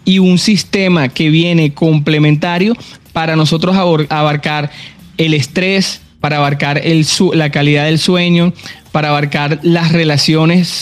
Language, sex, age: Spanish, male, 20-39